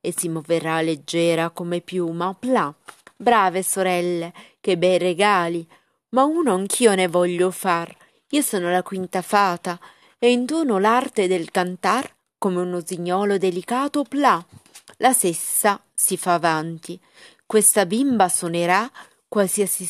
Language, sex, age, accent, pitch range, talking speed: Italian, female, 30-49, native, 180-235 Hz, 125 wpm